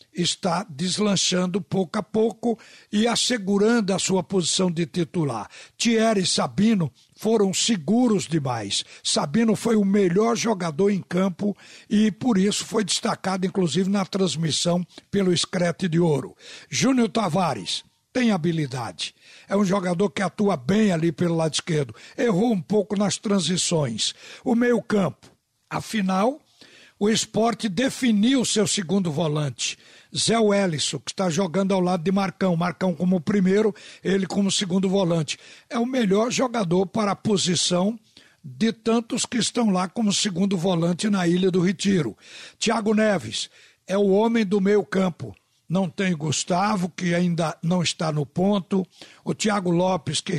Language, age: Portuguese, 60-79